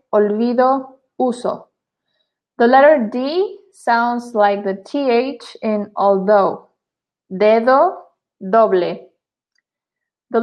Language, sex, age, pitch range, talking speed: English, female, 20-39, 210-265 Hz, 80 wpm